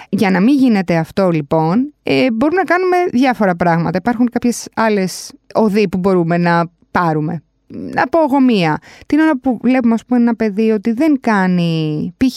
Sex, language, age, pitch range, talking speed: female, Greek, 20-39, 180-245 Hz, 165 wpm